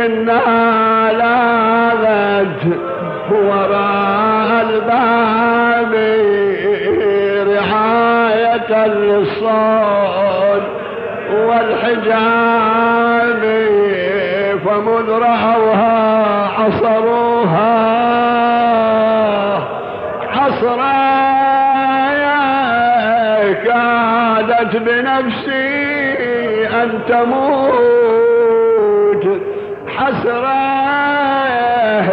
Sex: male